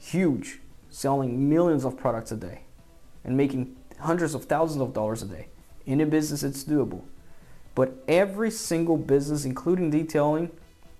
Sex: male